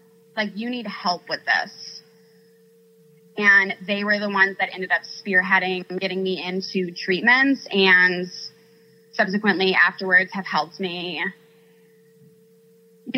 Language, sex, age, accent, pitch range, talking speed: English, female, 20-39, American, 180-220 Hz, 120 wpm